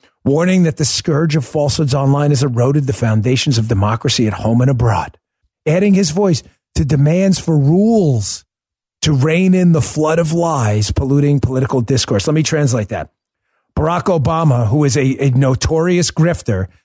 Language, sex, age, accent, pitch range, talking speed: English, male, 40-59, American, 135-175 Hz, 165 wpm